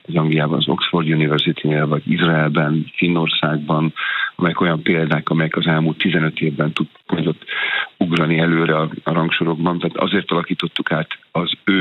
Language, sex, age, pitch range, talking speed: Hungarian, male, 50-69, 80-85 Hz, 140 wpm